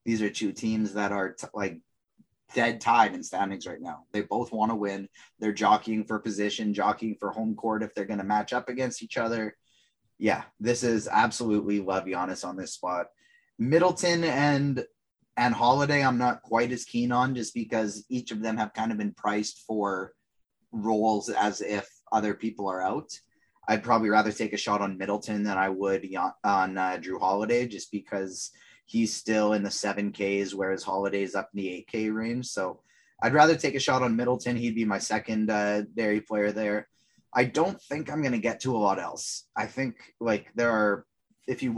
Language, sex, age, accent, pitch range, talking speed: English, male, 20-39, American, 100-120 Hz, 195 wpm